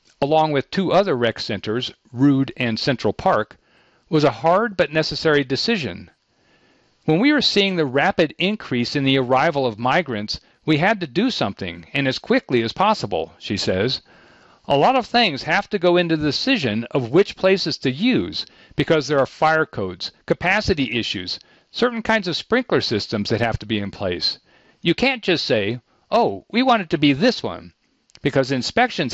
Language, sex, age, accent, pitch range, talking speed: English, male, 50-69, American, 125-190 Hz, 180 wpm